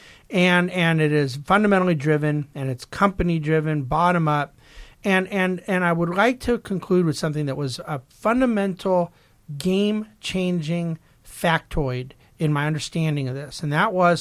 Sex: male